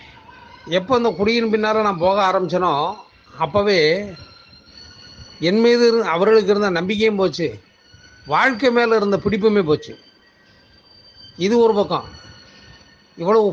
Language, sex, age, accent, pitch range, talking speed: Tamil, male, 30-49, native, 160-205 Hz, 105 wpm